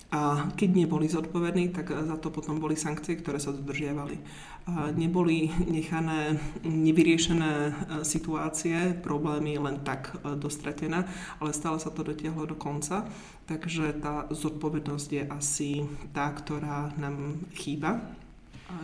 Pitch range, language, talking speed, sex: 150-165 Hz, Slovak, 120 wpm, male